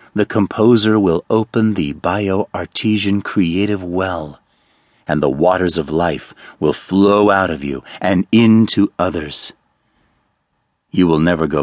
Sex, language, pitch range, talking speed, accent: male, English, 80-105 Hz, 130 wpm, American